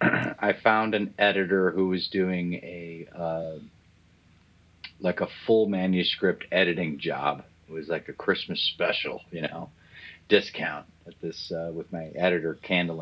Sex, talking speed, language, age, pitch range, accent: male, 145 wpm, English, 40-59, 80-95 Hz, American